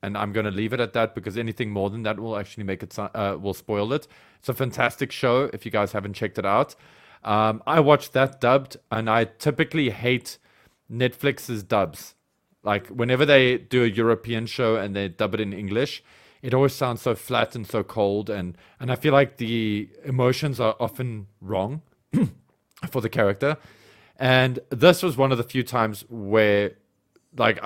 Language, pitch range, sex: English, 100-120 Hz, male